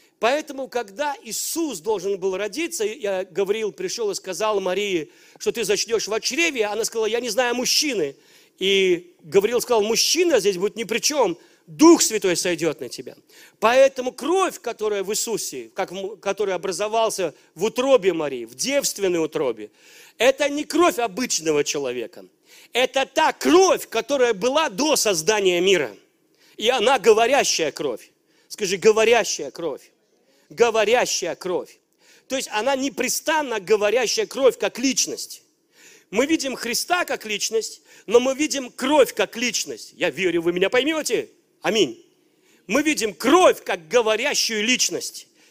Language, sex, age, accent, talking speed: Russian, male, 40-59, native, 135 wpm